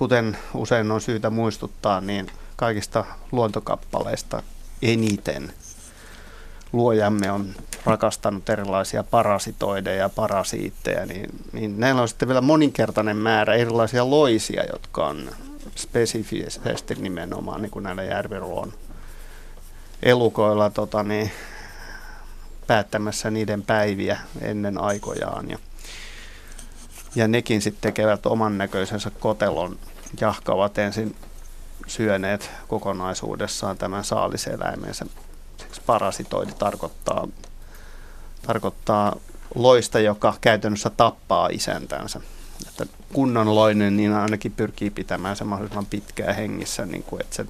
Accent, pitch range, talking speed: native, 90-110 Hz, 95 wpm